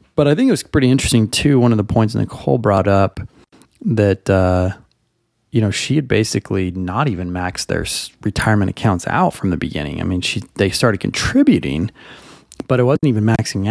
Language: English